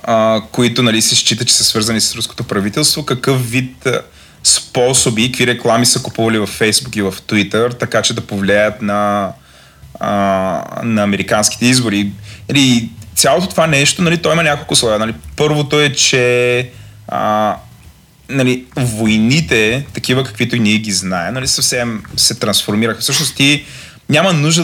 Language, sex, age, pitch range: Bulgarian, male, 30-49, 110-135 Hz